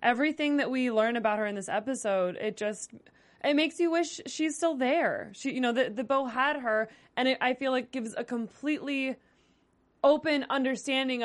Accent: American